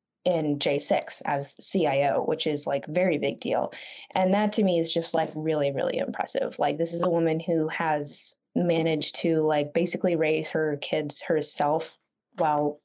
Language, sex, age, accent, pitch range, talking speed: English, female, 10-29, American, 160-200 Hz, 170 wpm